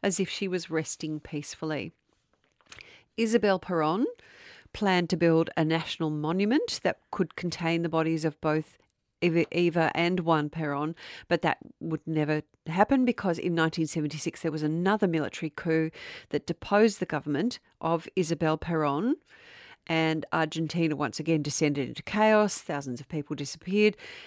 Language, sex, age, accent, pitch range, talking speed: English, female, 40-59, Australian, 160-195 Hz, 140 wpm